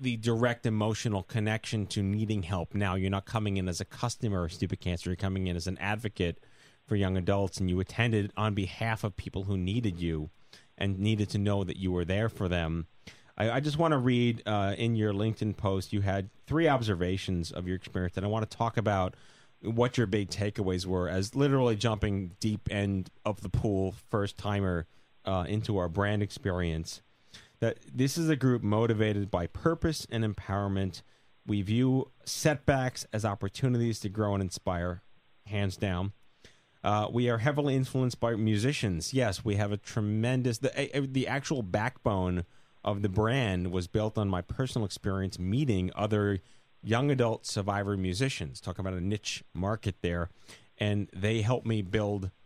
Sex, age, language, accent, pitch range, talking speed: male, 30-49, English, American, 95-115 Hz, 175 wpm